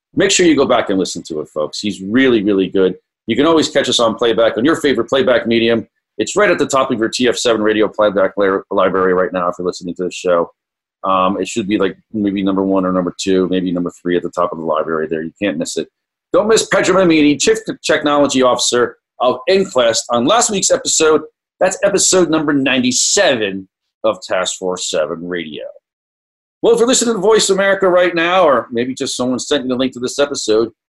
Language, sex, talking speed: English, male, 220 wpm